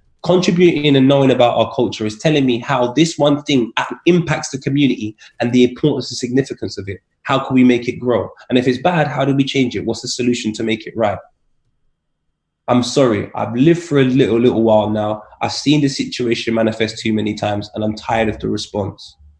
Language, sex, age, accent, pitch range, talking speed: English, male, 20-39, British, 110-135 Hz, 215 wpm